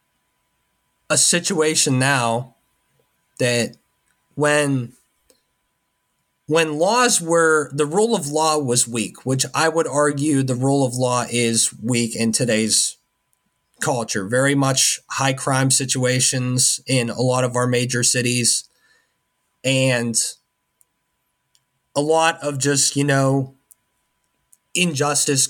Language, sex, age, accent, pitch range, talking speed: English, male, 30-49, American, 125-150 Hz, 110 wpm